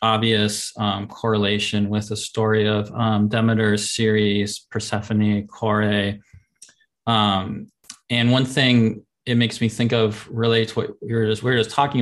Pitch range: 105-120 Hz